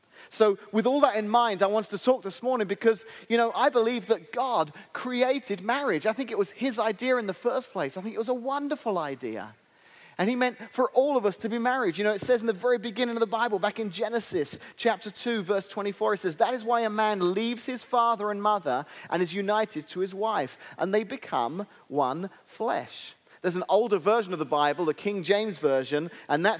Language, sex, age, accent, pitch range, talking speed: English, male, 30-49, British, 145-225 Hz, 230 wpm